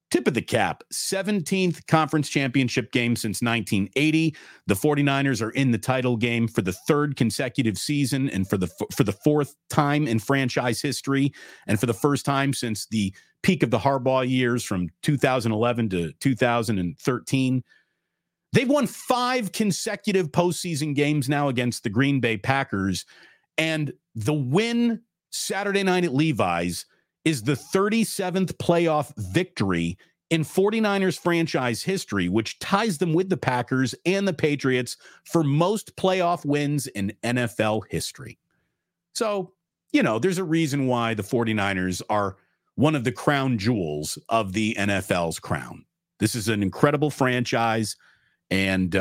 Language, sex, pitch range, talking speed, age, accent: English, male, 115-165 Hz, 145 wpm, 40-59, American